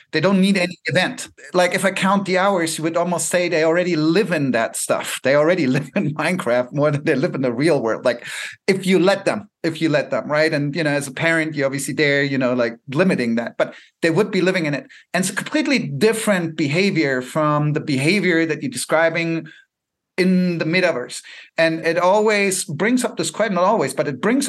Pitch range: 155-190 Hz